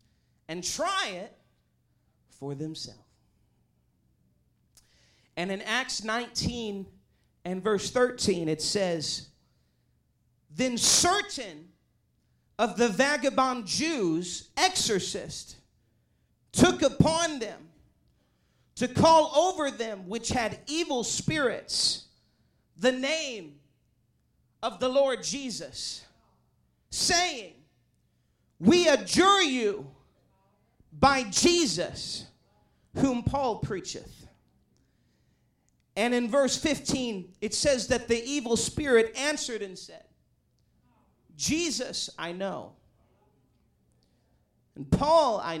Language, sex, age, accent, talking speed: English, male, 40-59, American, 85 wpm